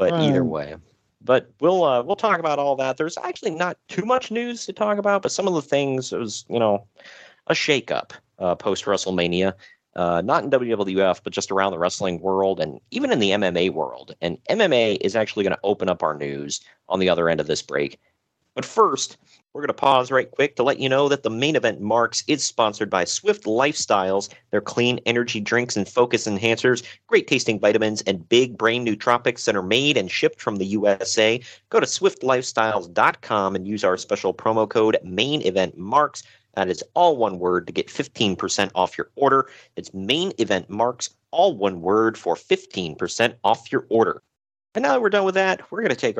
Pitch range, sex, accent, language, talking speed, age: 100-140 Hz, male, American, English, 205 wpm, 40-59